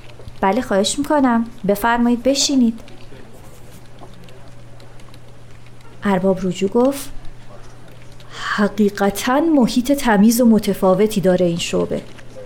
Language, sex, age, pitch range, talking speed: Persian, female, 30-49, 180-260 Hz, 75 wpm